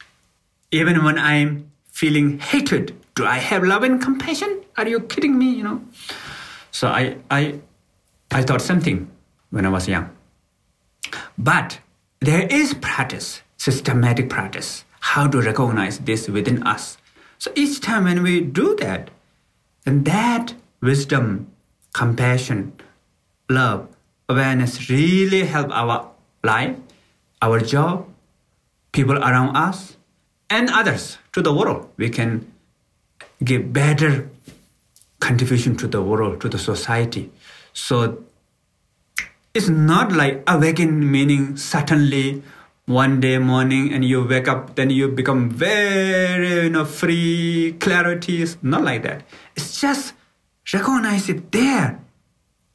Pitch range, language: 130-175 Hz, English